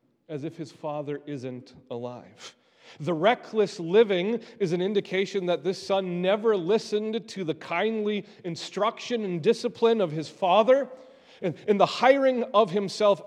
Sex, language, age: male, English, 40-59